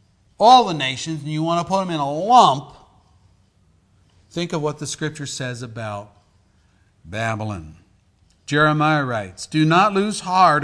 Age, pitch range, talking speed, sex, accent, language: 50-69, 130-180 Hz, 145 wpm, male, American, English